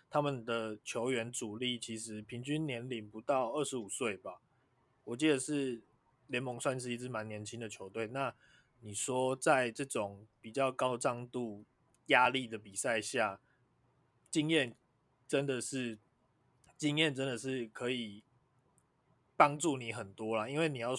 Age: 20-39